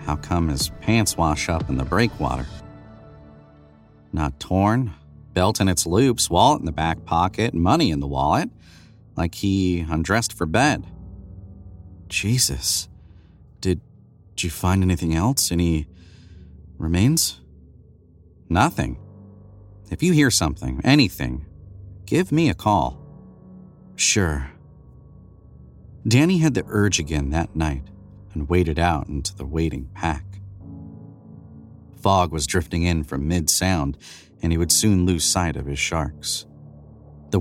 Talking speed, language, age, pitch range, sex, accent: 125 wpm, English, 40-59, 75-100 Hz, male, American